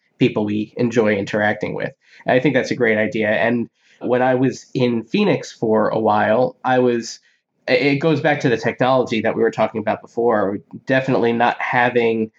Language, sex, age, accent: English, male, 20-39, American